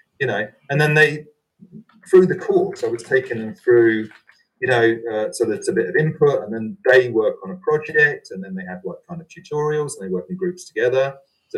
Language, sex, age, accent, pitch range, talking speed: English, male, 30-49, British, 125-195 Hz, 230 wpm